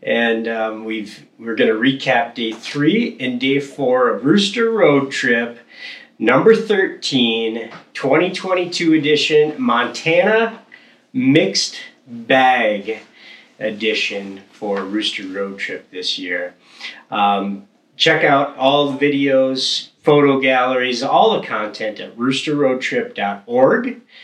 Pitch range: 110-175 Hz